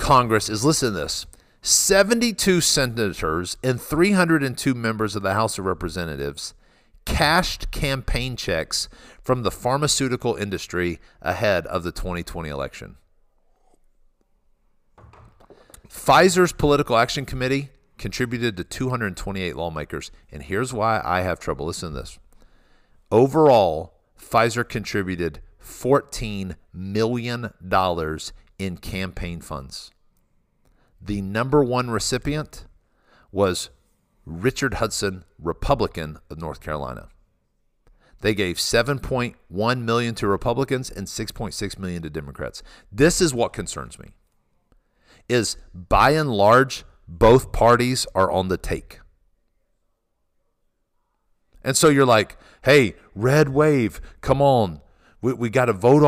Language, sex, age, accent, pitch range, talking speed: English, male, 50-69, American, 90-130 Hz, 110 wpm